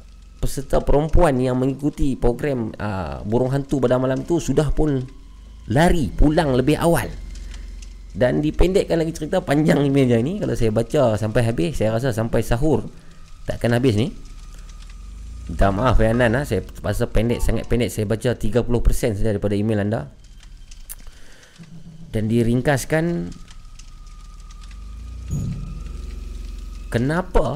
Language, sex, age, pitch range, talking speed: Malay, male, 30-49, 95-140 Hz, 120 wpm